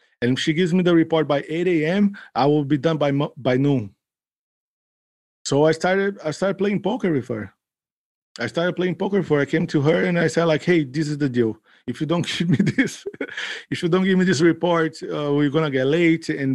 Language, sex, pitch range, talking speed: English, male, 140-170 Hz, 235 wpm